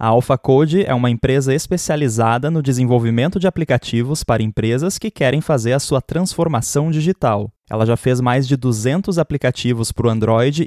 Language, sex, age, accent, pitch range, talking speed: Portuguese, male, 20-39, Brazilian, 115-165 Hz, 170 wpm